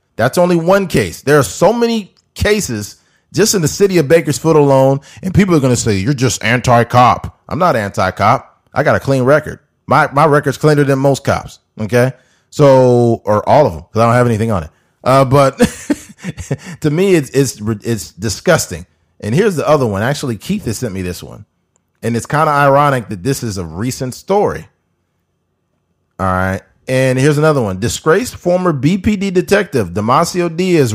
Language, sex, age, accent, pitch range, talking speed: English, male, 30-49, American, 115-155 Hz, 185 wpm